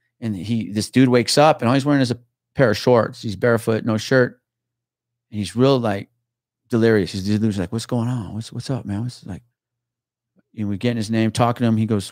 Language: English